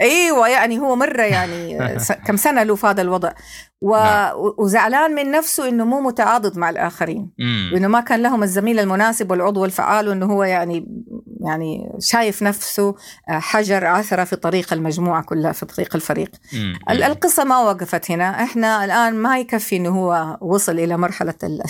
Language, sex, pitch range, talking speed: Arabic, female, 165-210 Hz, 155 wpm